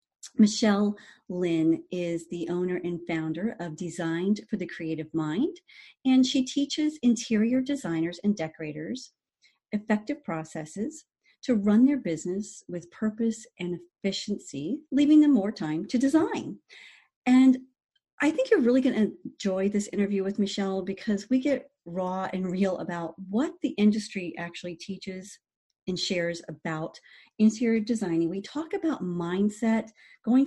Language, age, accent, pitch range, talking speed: English, 40-59, American, 175-245 Hz, 140 wpm